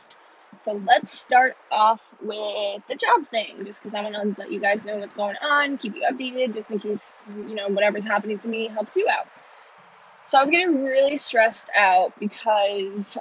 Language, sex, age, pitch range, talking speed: English, female, 20-39, 200-235 Hz, 195 wpm